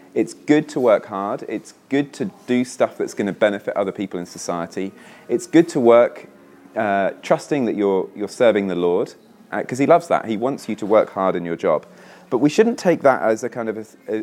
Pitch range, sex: 95-130 Hz, male